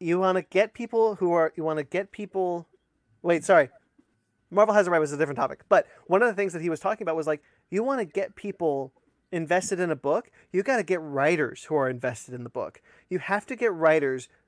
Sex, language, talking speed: male, English, 245 wpm